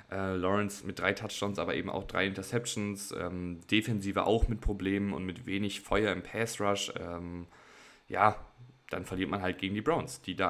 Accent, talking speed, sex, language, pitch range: German, 185 wpm, male, German, 95-105 Hz